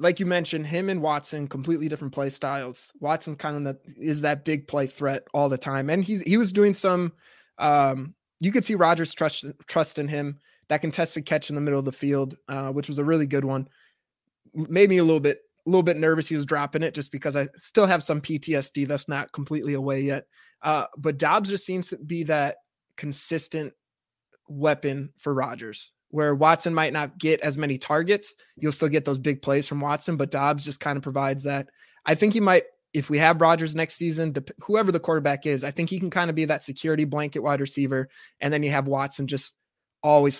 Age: 20-39